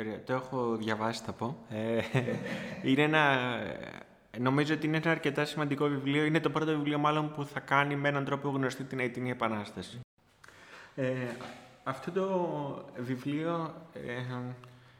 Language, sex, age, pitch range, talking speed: Greek, male, 20-39, 125-155 Hz, 120 wpm